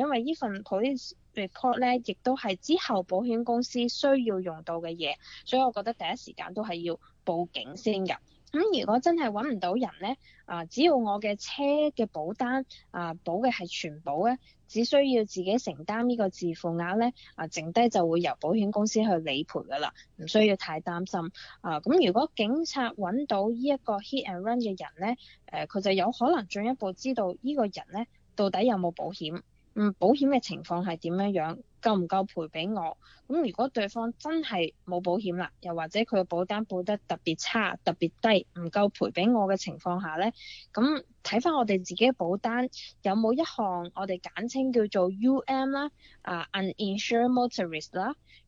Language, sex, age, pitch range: Chinese, female, 20-39, 180-245 Hz